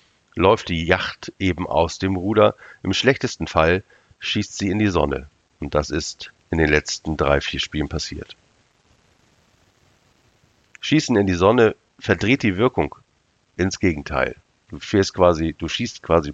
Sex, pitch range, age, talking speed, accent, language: male, 80-100 Hz, 50-69, 145 wpm, German, German